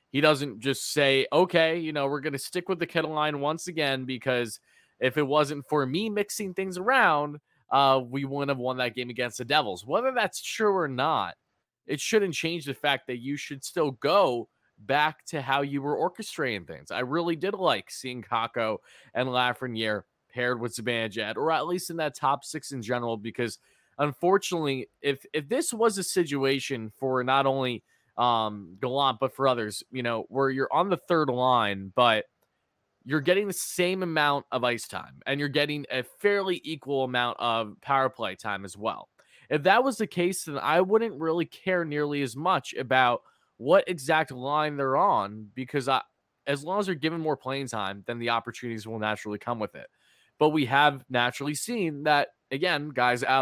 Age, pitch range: 20-39, 125-160 Hz